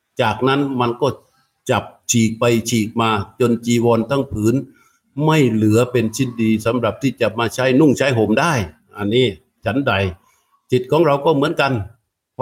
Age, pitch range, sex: 60-79, 115-130 Hz, male